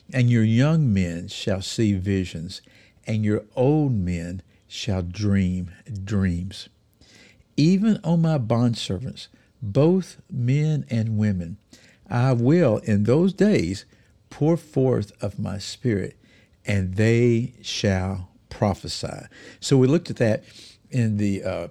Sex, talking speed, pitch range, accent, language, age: male, 120 wpm, 100-130 Hz, American, English, 60-79